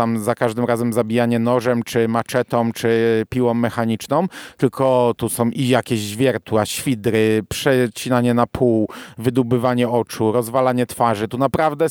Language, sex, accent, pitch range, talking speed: Polish, male, native, 120-155 Hz, 135 wpm